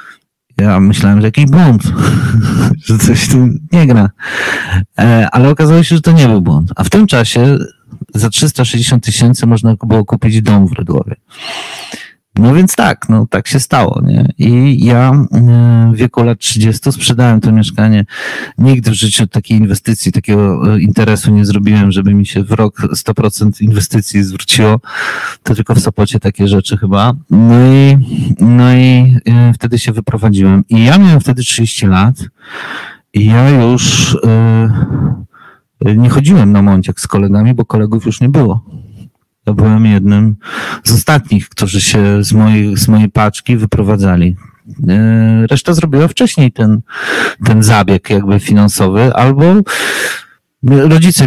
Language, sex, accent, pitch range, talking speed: Polish, male, native, 105-135 Hz, 145 wpm